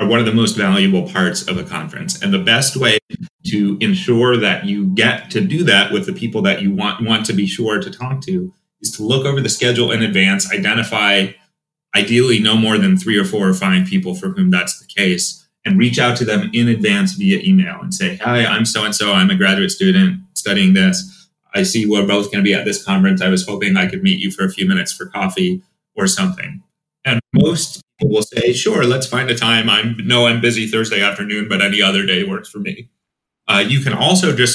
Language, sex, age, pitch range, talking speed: English, male, 30-49, 115-190 Hz, 230 wpm